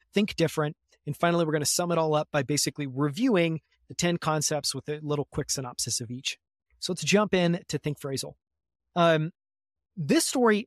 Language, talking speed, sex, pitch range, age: English, 190 wpm, male, 150-180 Hz, 30-49